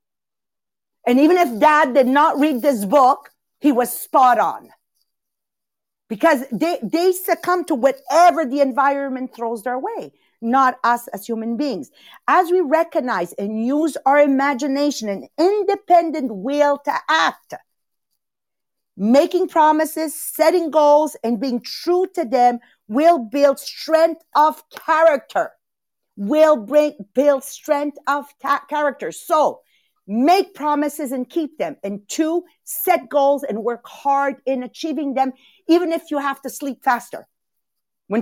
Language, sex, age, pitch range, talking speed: English, female, 50-69, 260-320 Hz, 135 wpm